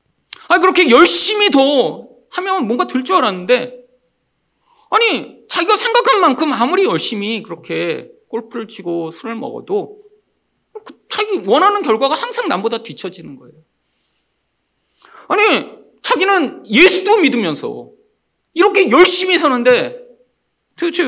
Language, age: Korean, 40-59